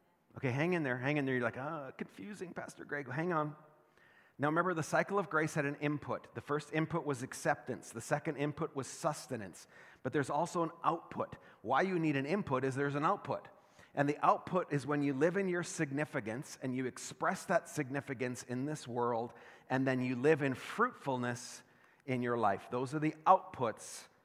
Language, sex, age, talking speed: English, male, 30-49, 195 wpm